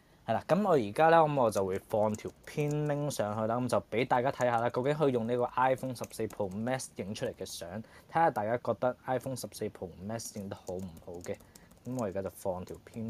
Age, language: 20-39, Chinese